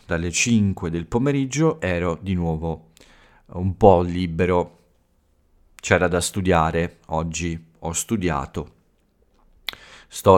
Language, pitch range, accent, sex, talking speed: Italian, 80-95 Hz, native, male, 100 wpm